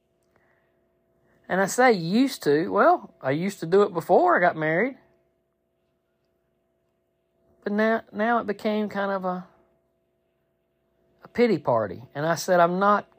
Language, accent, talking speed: English, American, 140 wpm